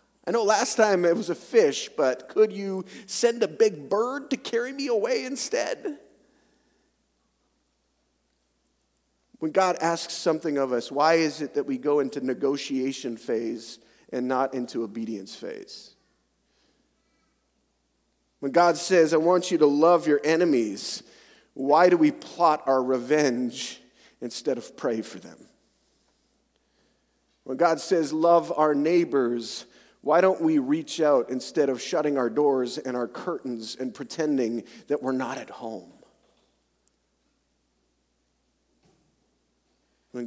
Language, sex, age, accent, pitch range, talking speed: English, male, 40-59, American, 120-170 Hz, 130 wpm